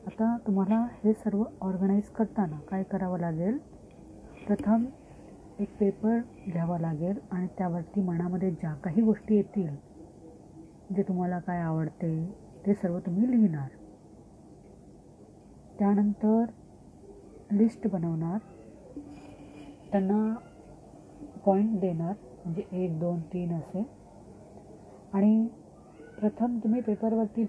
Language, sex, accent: Marathi, female, native